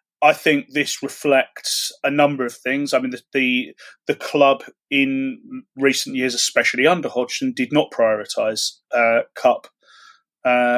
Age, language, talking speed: 30-49, English, 145 wpm